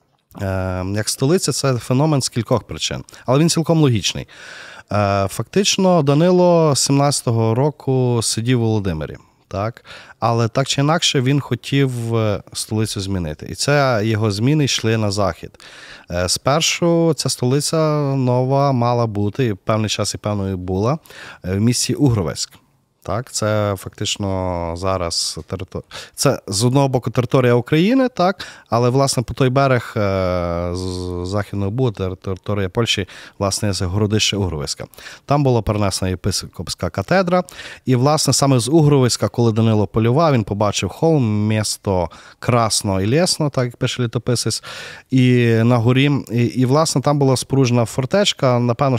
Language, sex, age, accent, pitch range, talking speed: Ukrainian, male, 30-49, native, 100-135 Hz, 135 wpm